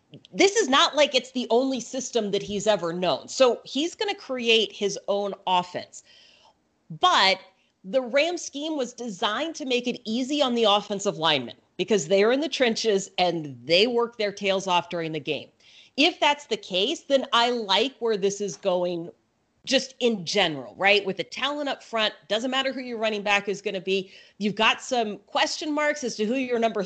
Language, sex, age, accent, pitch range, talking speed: English, female, 40-59, American, 200-265 Hz, 200 wpm